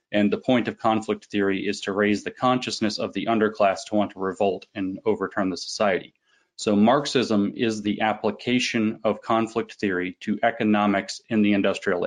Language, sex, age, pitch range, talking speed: English, male, 30-49, 100-110 Hz, 175 wpm